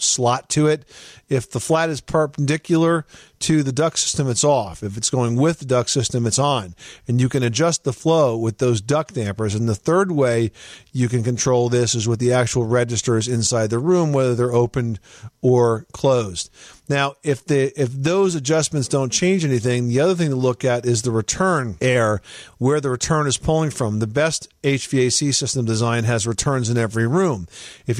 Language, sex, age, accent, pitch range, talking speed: English, male, 50-69, American, 115-140 Hz, 195 wpm